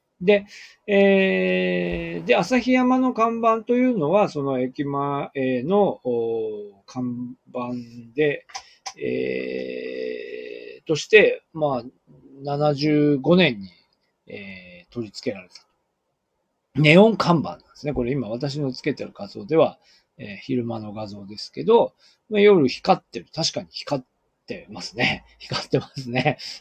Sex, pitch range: male, 120-200 Hz